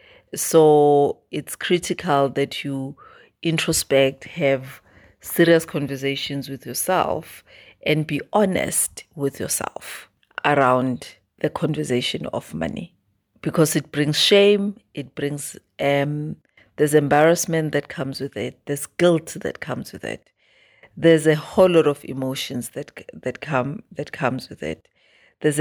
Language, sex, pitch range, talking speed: English, female, 135-155 Hz, 125 wpm